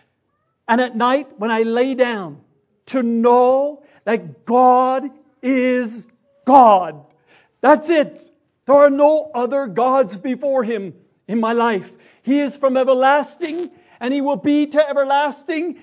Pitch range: 230-320 Hz